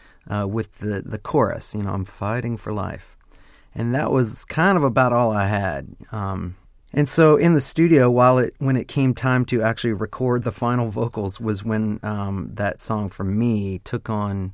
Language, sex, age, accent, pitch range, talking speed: English, male, 40-59, American, 100-125 Hz, 195 wpm